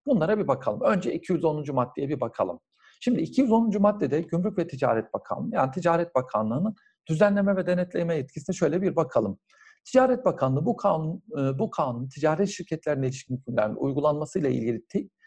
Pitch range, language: 130-200 Hz, Turkish